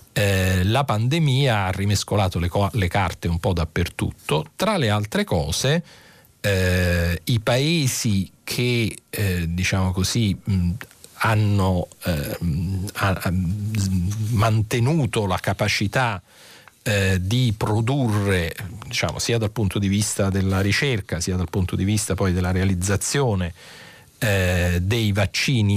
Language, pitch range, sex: Italian, 90-115 Hz, male